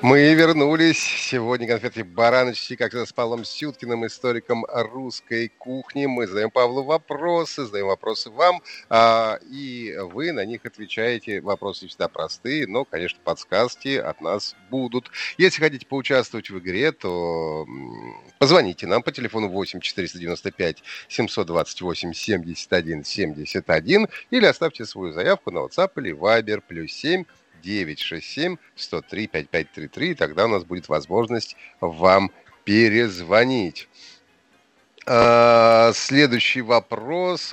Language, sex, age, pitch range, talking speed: Russian, male, 30-49, 115-150 Hz, 105 wpm